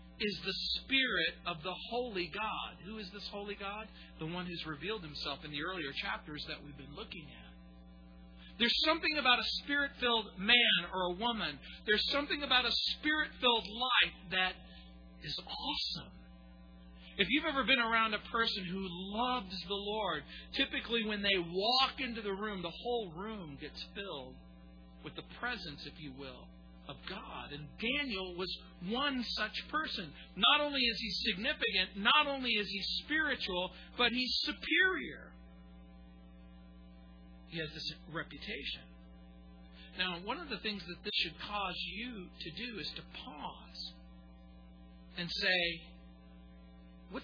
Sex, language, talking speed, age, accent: male, English, 145 wpm, 40-59, American